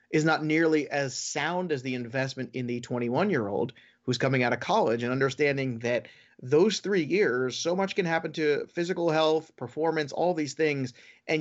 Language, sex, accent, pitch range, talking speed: English, male, American, 130-165 Hz, 180 wpm